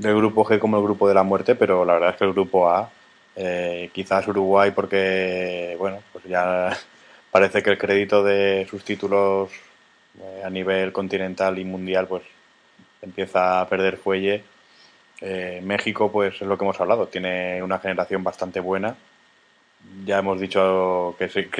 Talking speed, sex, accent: 165 wpm, male, Spanish